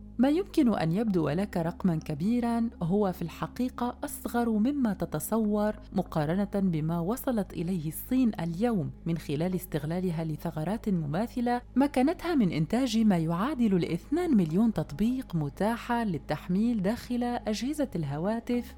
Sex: female